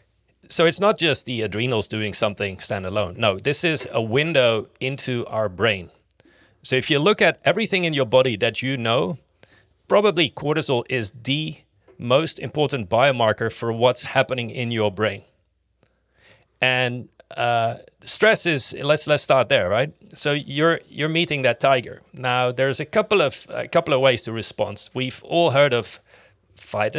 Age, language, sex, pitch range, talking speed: 30-49, English, male, 105-140 Hz, 160 wpm